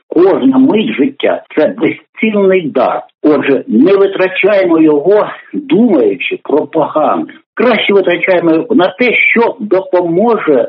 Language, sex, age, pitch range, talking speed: Ukrainian, male, 60-79, 195-320 Hz, 120 wpm